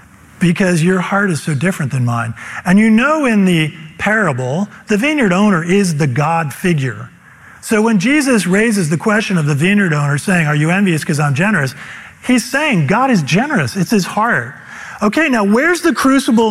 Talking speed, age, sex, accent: 185 wpm, 40-59, male, American